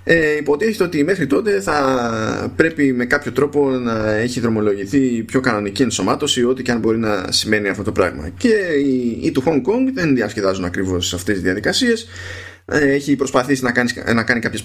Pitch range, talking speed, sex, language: 95-130 Hz, 185 wpm, male, Greek